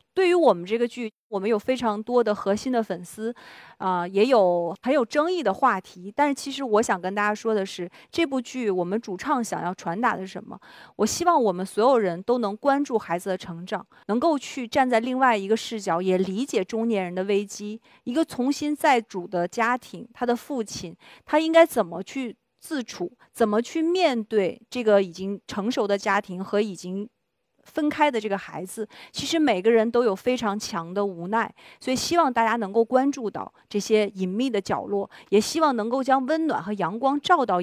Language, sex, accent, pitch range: Chinese, female, native, 195-255 Hz